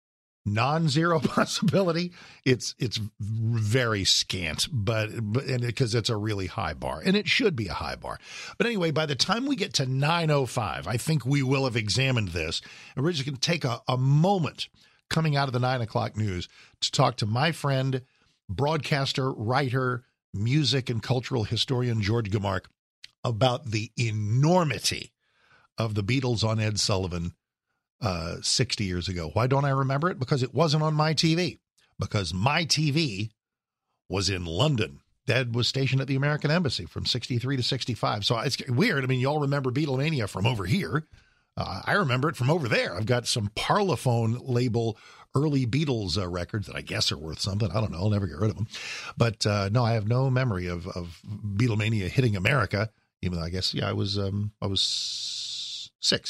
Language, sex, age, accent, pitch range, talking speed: English, male, 50-69, American, 105-140 Hz, 185 wpm